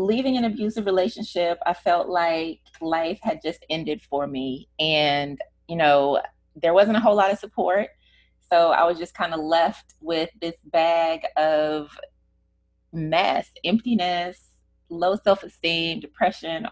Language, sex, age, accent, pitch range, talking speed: English, female, 20-39, American, 145-185 Hz, 140 wpm